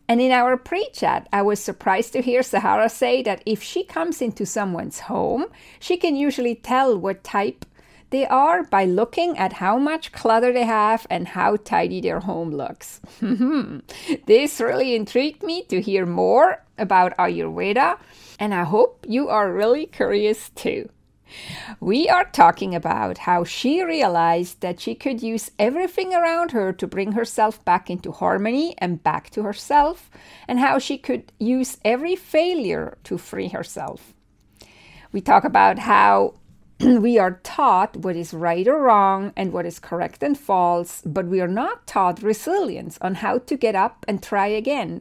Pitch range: 195-265 Hz